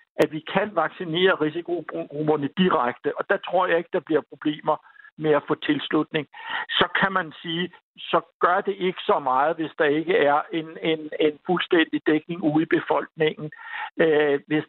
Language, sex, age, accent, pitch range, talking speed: Danish, male, 60-79, native, 150-180 Hz, 165 wpm